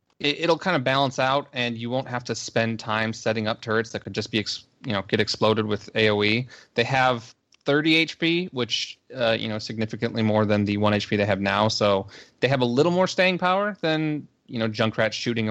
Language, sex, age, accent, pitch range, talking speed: English, male, 20-39, American, 110-140 Hz, 215 wpm